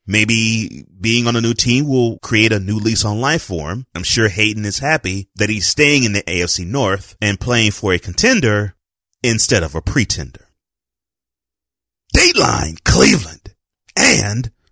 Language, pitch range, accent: English, 95-125 Hz, American